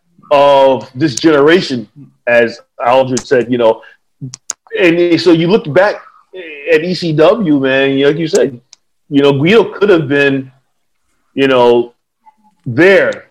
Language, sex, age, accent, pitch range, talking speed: English, male, 40-59, American, 130-170 Hz, 135 wpm